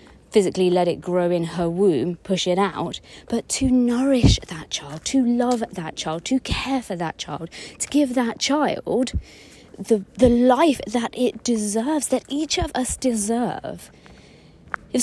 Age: 30-49